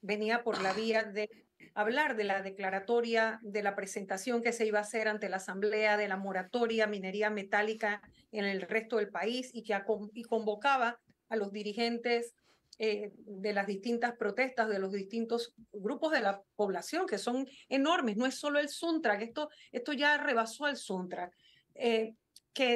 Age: 40-59